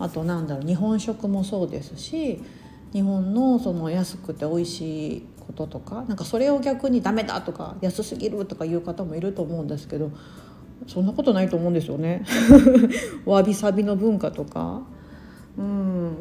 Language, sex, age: Japanese, female, 40-59